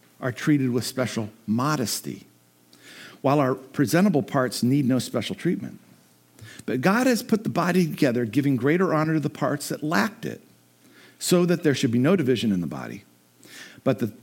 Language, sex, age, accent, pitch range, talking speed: English, male, 50-69, American, 100-150 Hz, 170 wpm